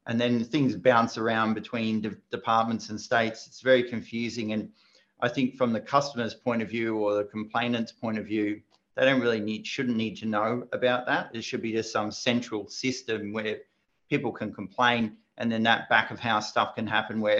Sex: male